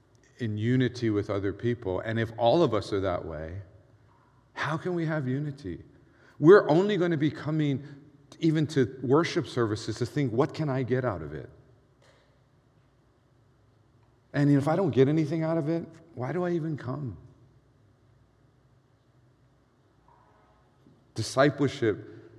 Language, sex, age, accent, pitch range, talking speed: English, male, 50-69, American, 115-135 Hz, 140 wpm